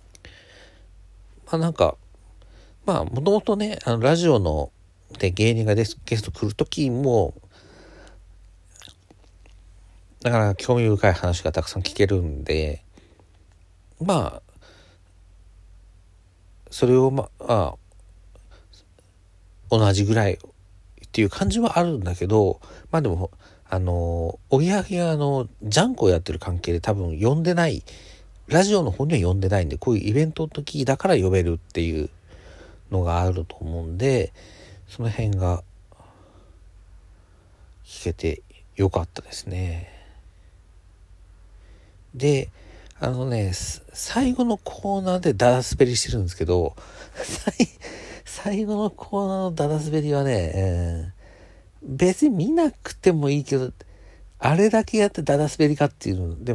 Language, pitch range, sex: Japanese, 90-130 Hz, male